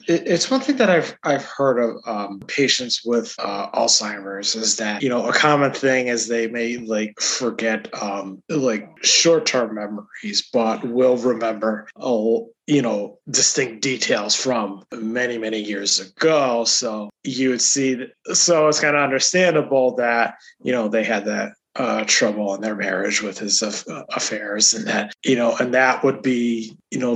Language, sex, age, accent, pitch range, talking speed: English, male, 20-39, American, 110-150 Hz, 170 wpm